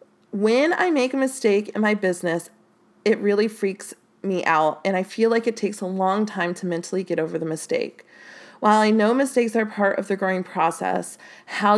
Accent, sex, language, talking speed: American, female, English, 200 wpm